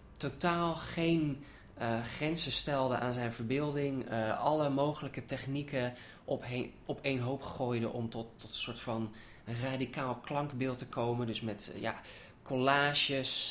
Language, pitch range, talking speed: English, 115-140 Hz, 140 wpm